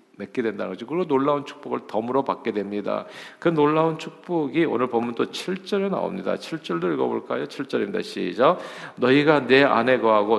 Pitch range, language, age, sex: 105-145 Hz, Korean, 50-69, male